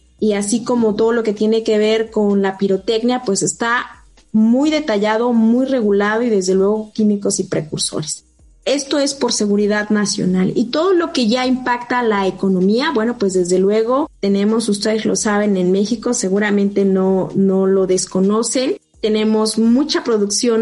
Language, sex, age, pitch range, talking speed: Spanish, female, 20-39, 200-240 Hz, 160 wpm